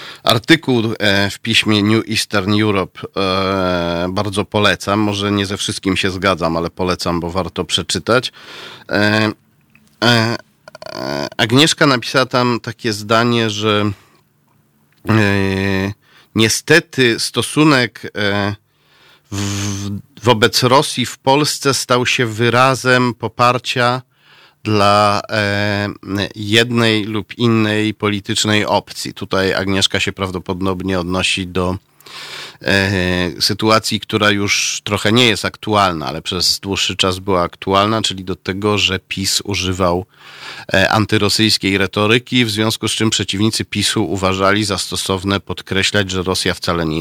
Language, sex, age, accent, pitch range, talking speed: Polish, male, 40-59, native, 95-115 Hz, 105 wpm